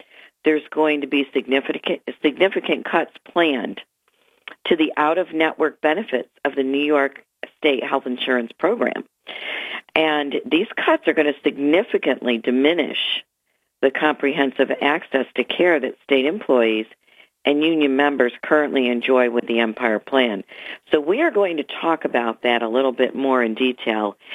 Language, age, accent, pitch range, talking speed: English, 50-69, American, 125-155 Hz, 145 wpm